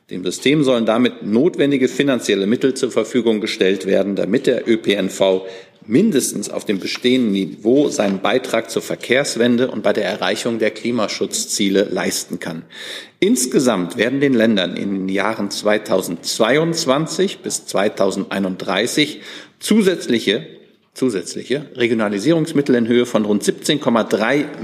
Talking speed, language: 120 wpm, German